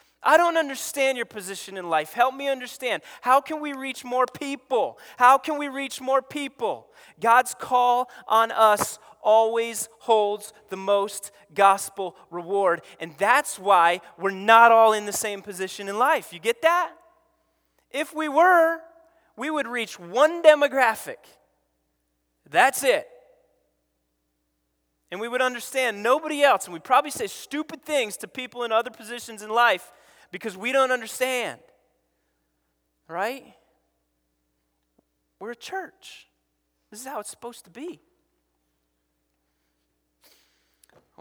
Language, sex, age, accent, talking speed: English, male, 30-49, American, 135 wpm